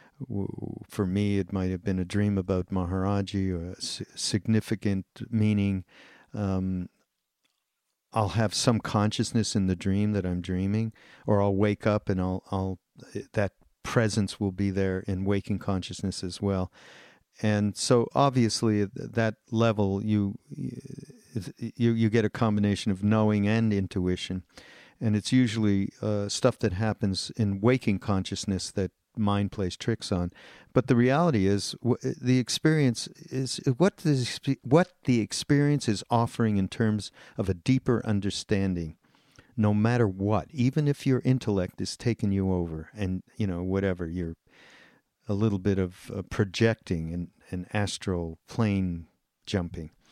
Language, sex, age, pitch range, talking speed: English, male, 50-69, 95-115 Hz, 140 wpm